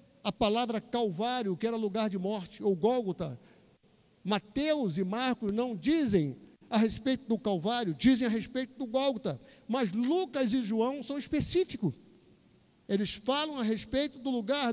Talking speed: 145 wpm